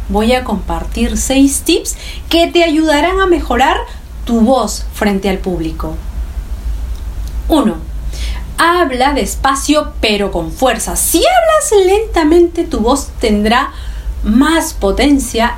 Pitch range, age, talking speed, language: 195-285 Hz, 40-59, 110 wpm, Spanish